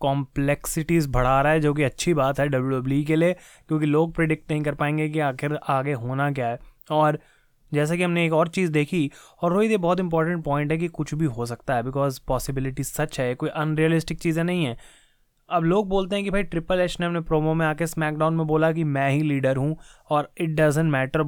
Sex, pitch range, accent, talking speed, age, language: male, 140-170 Hz, native, 225 wpm, 20-39, Hindi